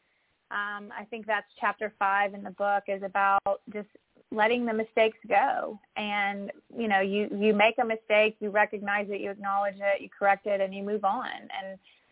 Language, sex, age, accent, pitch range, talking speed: English, female, 30-49, American, 200-220 Hz, 190 wpm